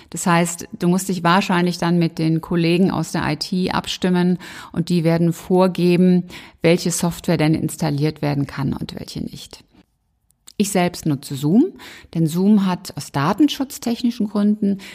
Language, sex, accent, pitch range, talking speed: German, female, German, 170-200 Hz, 150 wpm